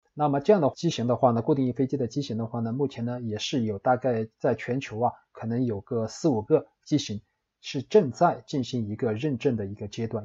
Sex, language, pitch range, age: male, Chinese, 110-135 Hz, 20-39